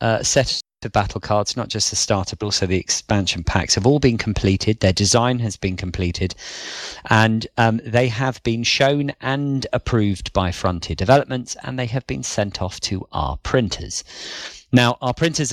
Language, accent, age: English, British, 40-59